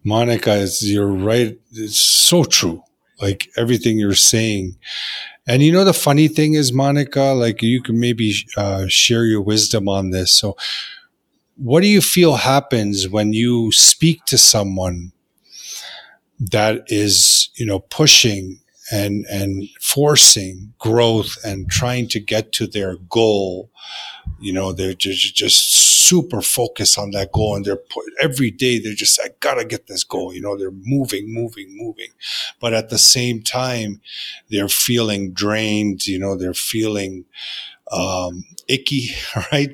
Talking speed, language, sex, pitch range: 150 wpm, English, male, 100-125 Hz